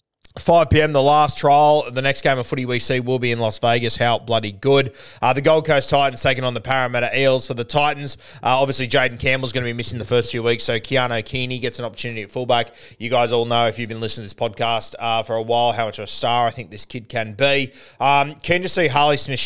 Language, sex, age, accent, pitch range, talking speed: English, male, 20-39, Australian, 115-135 Hz, 260 wpm